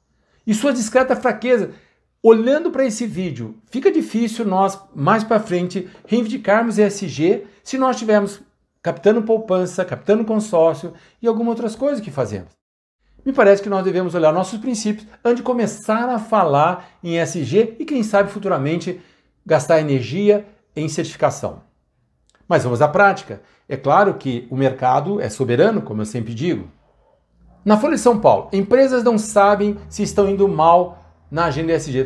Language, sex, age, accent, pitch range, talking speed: Portuguese, male, 60-79, Brazilian, 155-230 Hz, 155 wpm